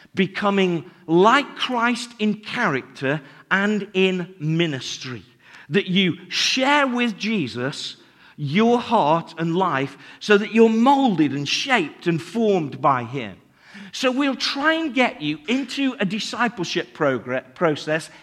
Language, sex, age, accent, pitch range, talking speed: English, male, 50-69, British, 165-245 Hz, 120 wpm